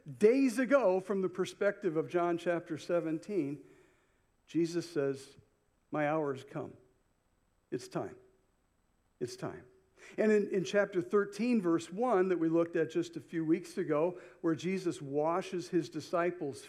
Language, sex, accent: English, male, American